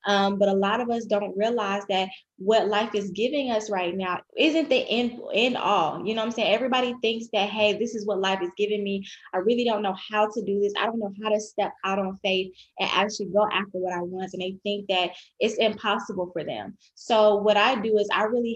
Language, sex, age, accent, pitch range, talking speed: English, female, 20-39, American, 195-225 Hz, 245 wpm